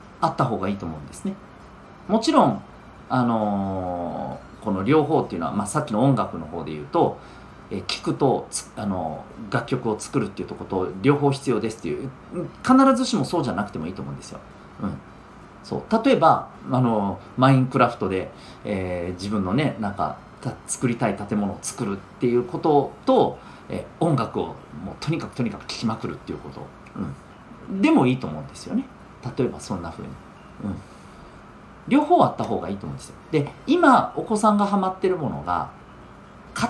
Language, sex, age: Japanese, male, 40-59